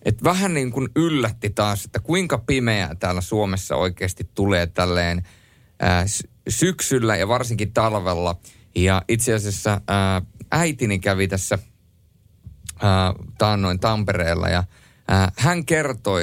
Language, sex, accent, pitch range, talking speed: Finnish, male, native, 95-125 Hz, 120 wpm